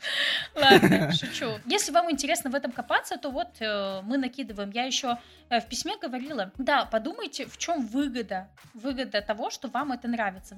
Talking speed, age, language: 170 wpm, 20-39, Russian